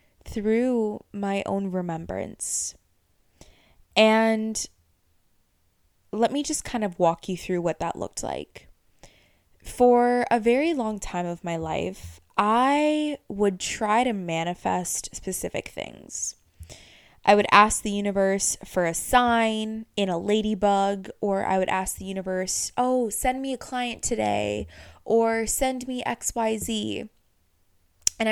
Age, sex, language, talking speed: 20-39, female, English, 125 wpm